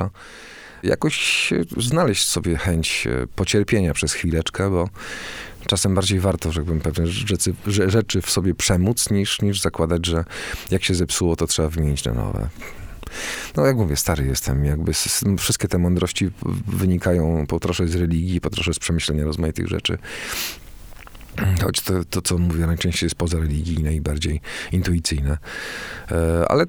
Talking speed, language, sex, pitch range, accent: 135 wpm, Polish, male, 80-100 Hz, native